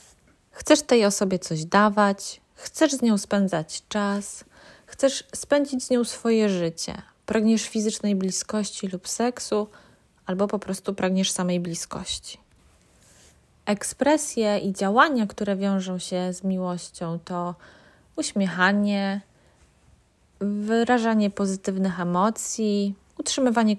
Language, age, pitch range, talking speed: Polish, 20-39, 195-225 Hz, 105 wpm